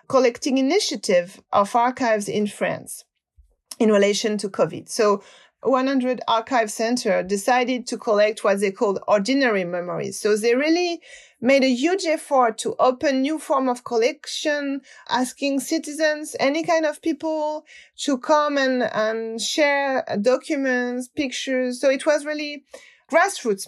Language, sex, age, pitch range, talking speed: English, female, 30-49, 220-300 Hz, 135 wpm